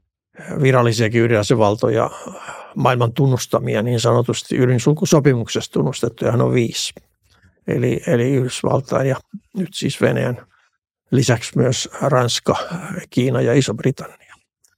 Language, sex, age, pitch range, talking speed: Finnish, male, 60-79, 115-130 Hz, 95 wpm